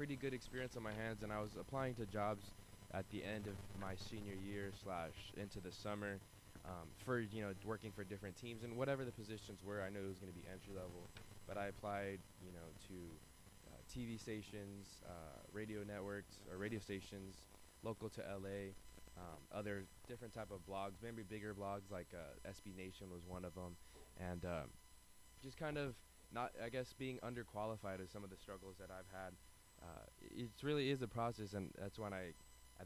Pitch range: 90-110 Hz